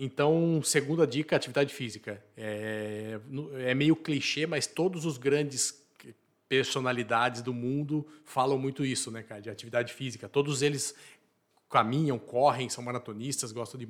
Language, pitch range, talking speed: Portuguese, 120-145 Hz, 140 wpm